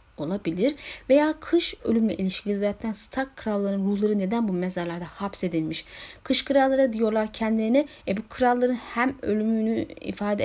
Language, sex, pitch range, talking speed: Turkish, female, 195-255 Hz, 130 wpm